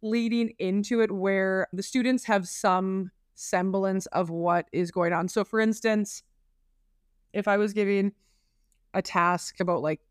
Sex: female